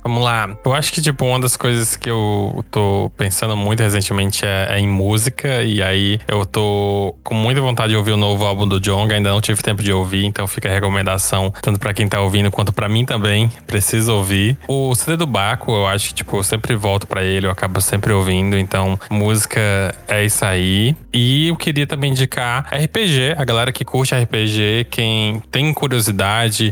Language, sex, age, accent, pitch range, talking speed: Portuguese, male, 20-39, Brazilian, 100-115 Hz, 200 wpm